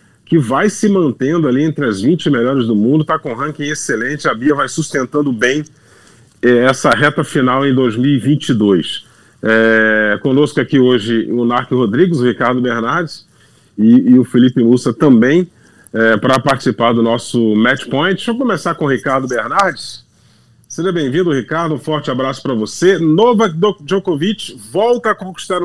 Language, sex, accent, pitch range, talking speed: Portuguese, male, Brazilian, 125-175 Hz, 155 wpm